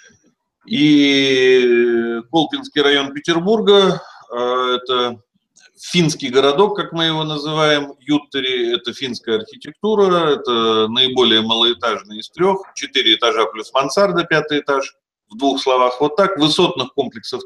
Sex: male